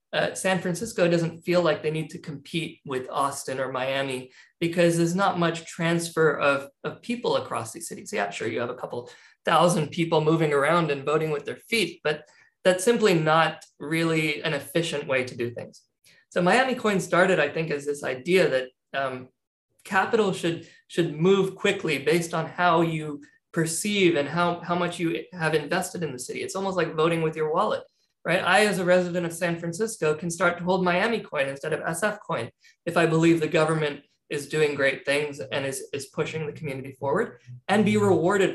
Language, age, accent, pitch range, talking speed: English, 20-39, American, 145-180 Hz, 195 wpm